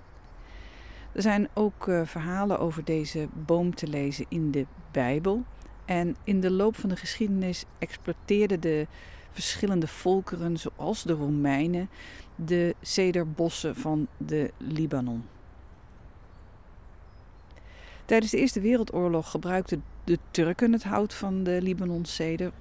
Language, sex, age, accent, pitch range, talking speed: Dutch, female, 50-69, Dutch, 135-180 Hz, 115 wpm